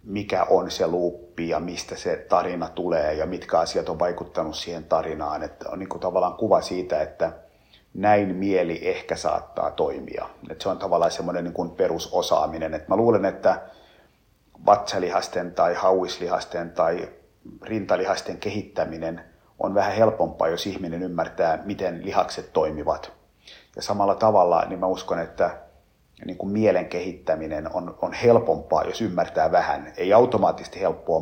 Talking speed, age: 145 wpm, 50-69